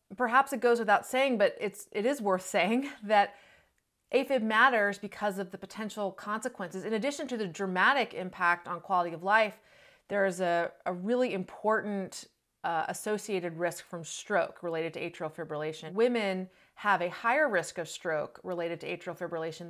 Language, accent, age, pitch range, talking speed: English, American, 30-49, 170-220 Hz, 170 wpm